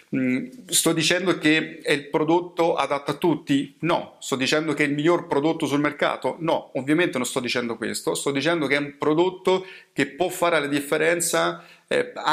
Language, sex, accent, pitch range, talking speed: Italian, male, native, 135-175 Hz, 185 wpm